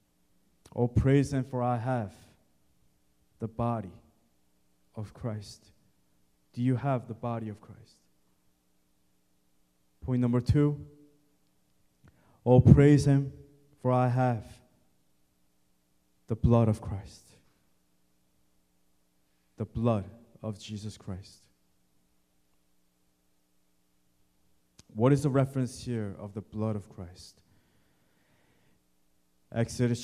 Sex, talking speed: male, 90 wpm